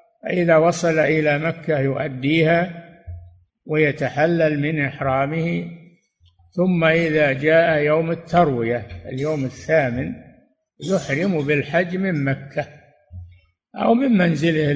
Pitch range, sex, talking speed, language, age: 140-180 Hz, male, 90 wpm, Arabic, 60-79